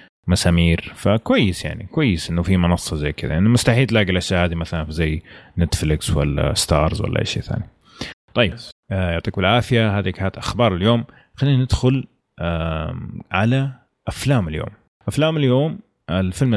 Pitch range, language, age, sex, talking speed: 85-105 Hz, Arabic, 30-49, male, 150 wpm